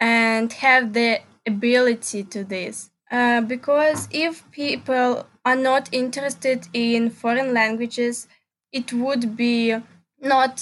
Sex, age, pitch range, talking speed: female, 10-29, 230-260 Hz, 115 wpm